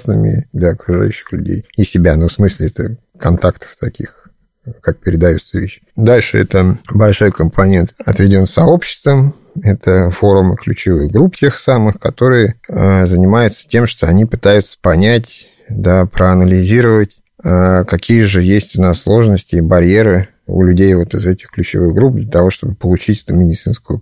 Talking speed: 145 wpm